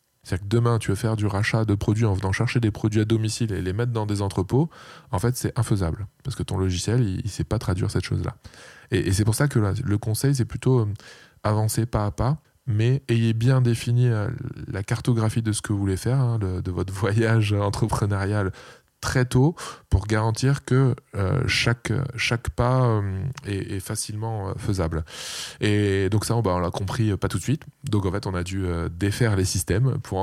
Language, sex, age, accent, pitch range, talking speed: French, male, 20-39, French, 100-120 Hz, 210 wpm